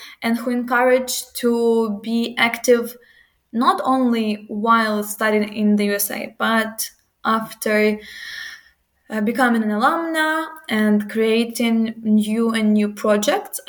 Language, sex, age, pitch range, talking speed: English, female, 20-39, 215-265 Hz, 110 wpm